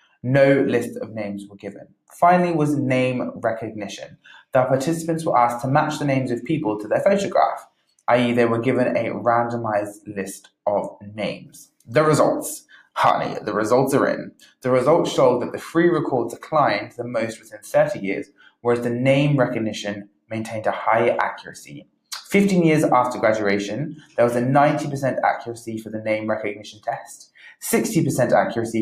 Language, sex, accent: English, male, British